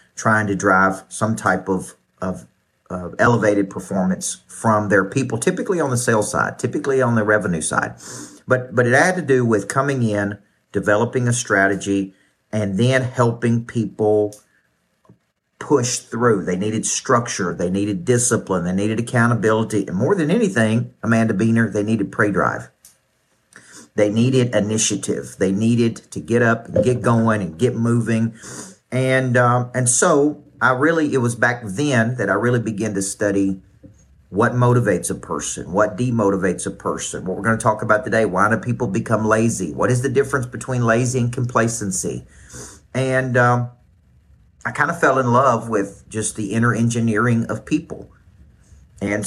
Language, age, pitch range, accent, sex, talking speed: English, 50-69, 100-120 Hz, American, male, 160 wpm